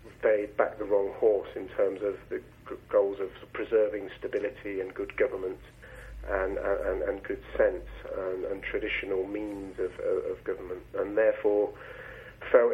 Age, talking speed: 40-59, 150 wpm